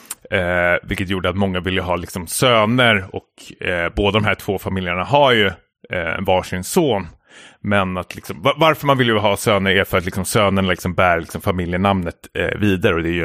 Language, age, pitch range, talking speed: Swedish, 30-49, 90-110 Hz, 210 wpm